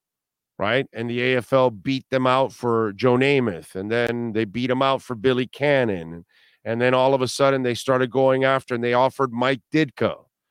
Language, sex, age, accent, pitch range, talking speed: English, male, 50-69, American, 120-140 Hz, 195 wpm